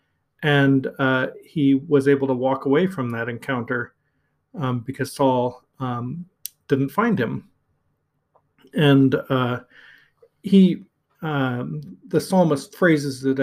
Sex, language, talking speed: male, English, 115 wpm